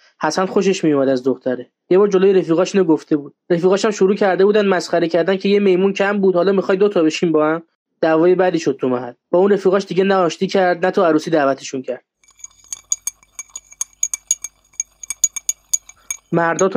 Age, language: 20-39, Persian